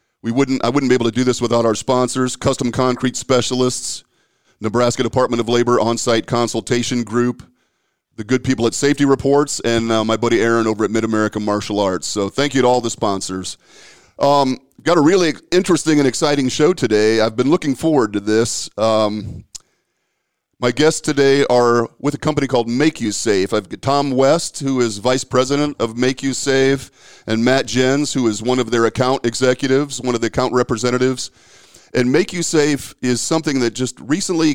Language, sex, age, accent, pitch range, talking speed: English, male, 40-59, American, 115-135 Hz, 190 wpm